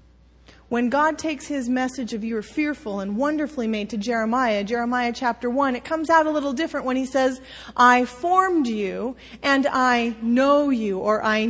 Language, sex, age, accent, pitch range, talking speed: English, female, 30-49, American, 220-300 Hz, 175 wpm